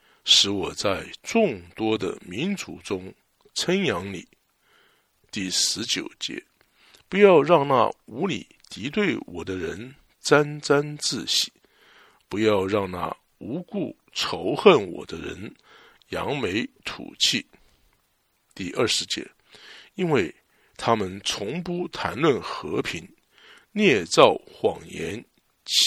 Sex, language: male, English